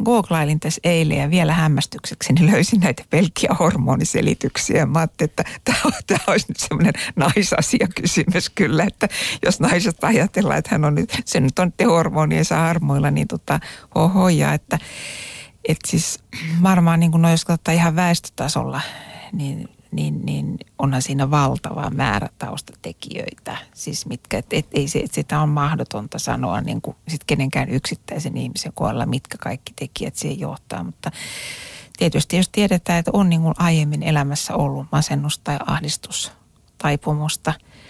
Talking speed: 140 wpm